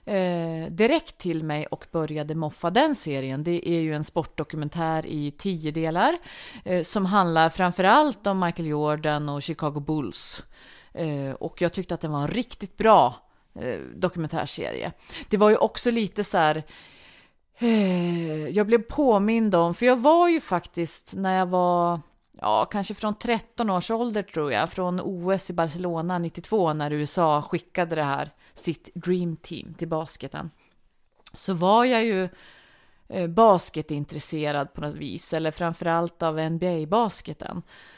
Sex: female